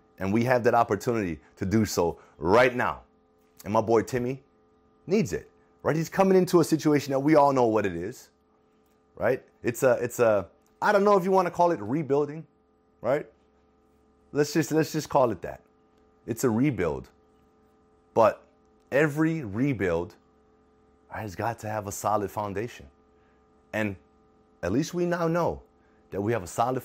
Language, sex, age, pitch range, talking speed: English, male, 30-49, 85-135 Hz, 170 wpm